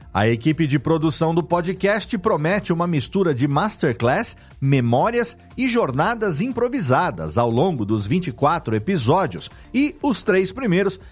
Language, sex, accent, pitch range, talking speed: Portuguese, male, Brazilian, 125-190 Hz, 130 wpm